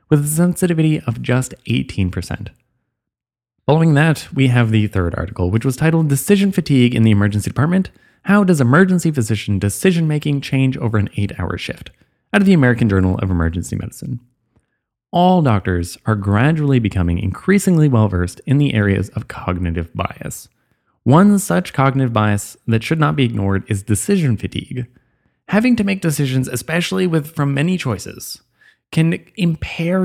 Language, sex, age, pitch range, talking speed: English, male, 20-39, 110-160 Hz, 150 wpm